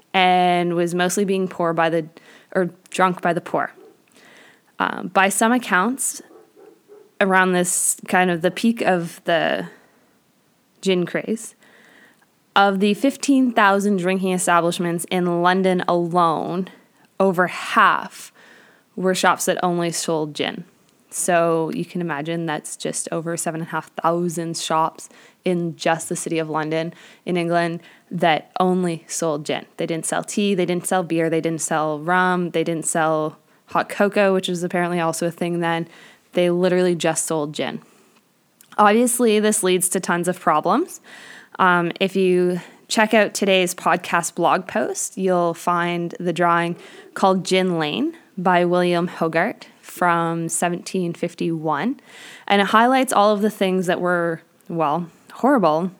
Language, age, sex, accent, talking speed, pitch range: English, 20-39, female, American, 140 wpm, 170-195 Hz